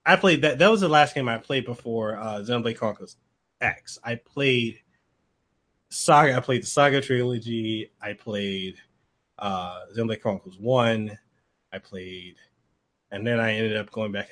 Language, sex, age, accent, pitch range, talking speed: English, male, 20-39, American, 110-135 Hz, 160 wpm